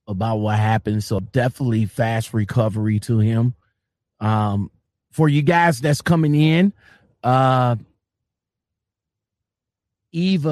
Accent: American